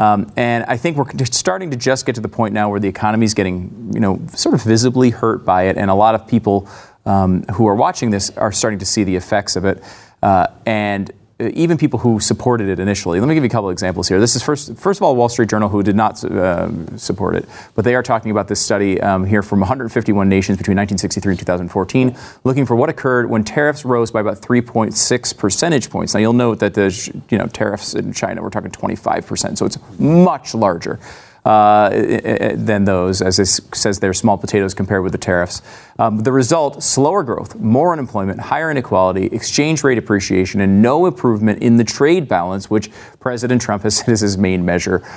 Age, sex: 30-49, male